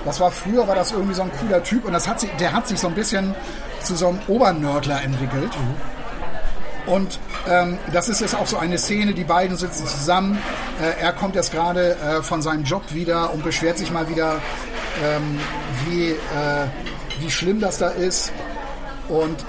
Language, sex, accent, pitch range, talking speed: German, male, German, 160-195 Hz, 190 wpm